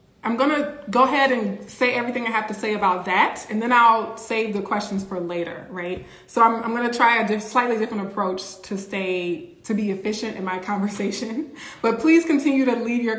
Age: 20-39